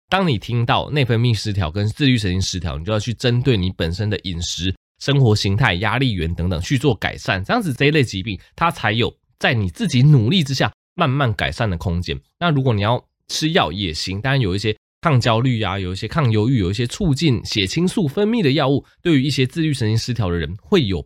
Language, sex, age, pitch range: Chinese, male, 20-39, 105-150 Hz